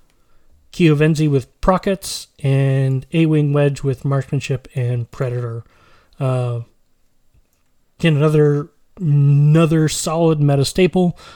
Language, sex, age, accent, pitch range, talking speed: English, male, 30-49, American, 130-150 Hz, 95 wpm